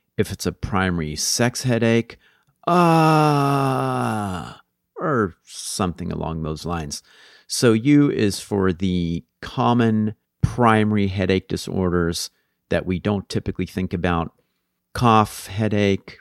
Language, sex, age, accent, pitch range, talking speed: English, male, 40-59, American, 85-105 Hz, 110 wpm